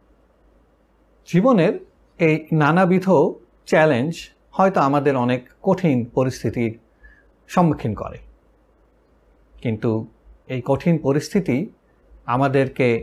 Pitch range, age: 130-180 Hz, 50-69